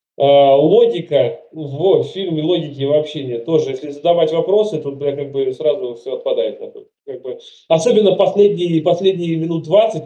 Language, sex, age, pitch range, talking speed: Russian, male, 20-39, 150-235 Hz, 150 wpm